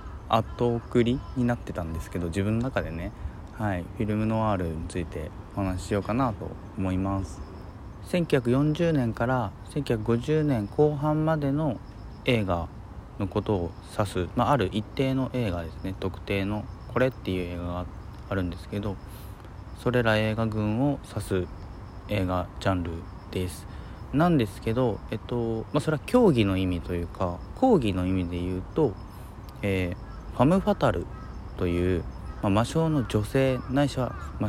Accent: native